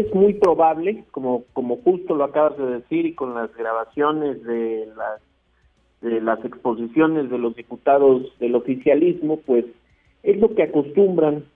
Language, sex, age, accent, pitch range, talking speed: Spanish, male, 50-69, Mexican, 120-150 Hz, 150 wpm